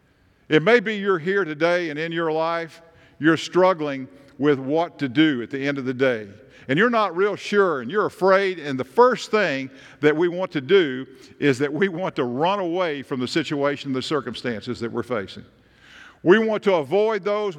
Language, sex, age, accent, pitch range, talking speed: English, male, 50-69, American, 145-195 Hz, 200 wpm